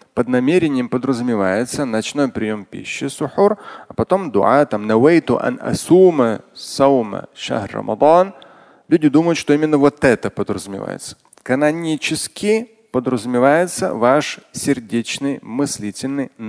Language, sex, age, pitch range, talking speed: Russian, male, 30-49, 120-155 Hz, 100 wpm